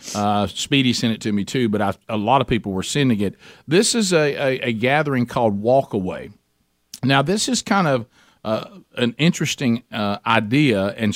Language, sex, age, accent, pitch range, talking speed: English, male, 50-69, American, 115-145 Hz, 195 wpm